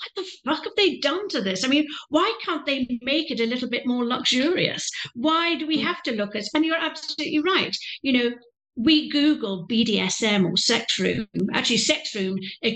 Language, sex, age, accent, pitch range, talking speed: English, female, 50-69, British, 195-275 Hz, 200 wpm